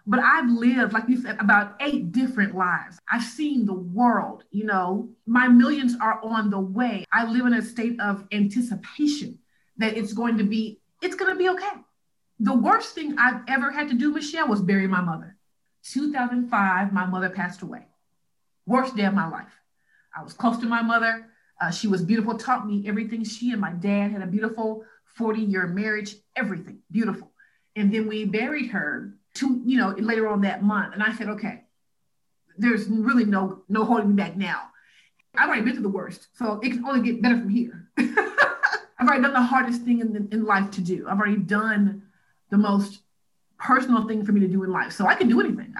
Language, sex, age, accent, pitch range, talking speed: English, female, 30-49, American, 200-245 Hz, 200 wpm